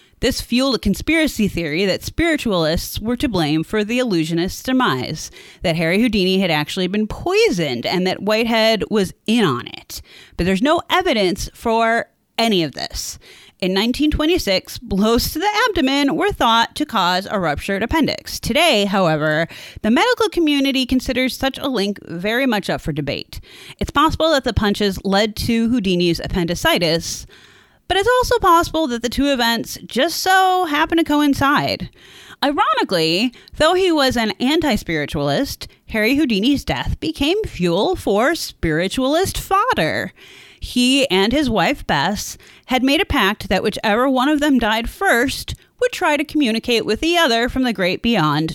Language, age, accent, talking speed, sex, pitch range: English, 30-49, American, 155 wpm, female, 190-295 Hz